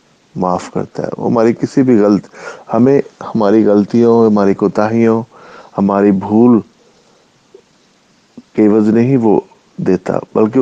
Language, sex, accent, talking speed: English, male, Indian, 115 wpm